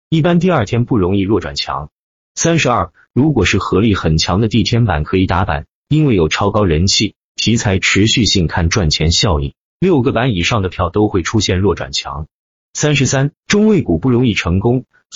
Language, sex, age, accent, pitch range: Chinese, male, 30-49, native, 90-130 Hz